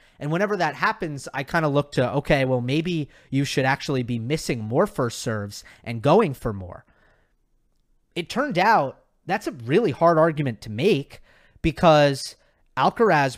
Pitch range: 125-165 Hz